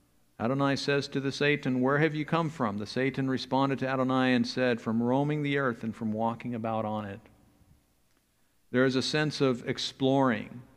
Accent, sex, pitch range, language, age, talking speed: American, male, 115-140 Hz, English, 50-69, 185 wpm